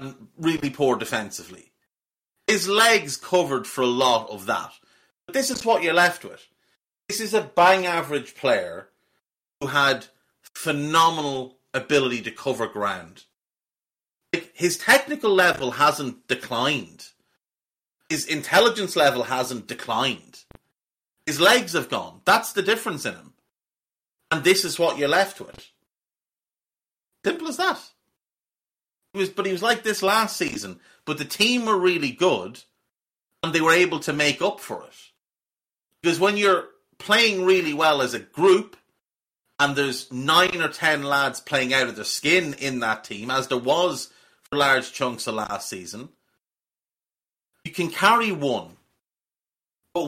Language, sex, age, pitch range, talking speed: English, male, 30-49, 135-195 Hz, 145 wpm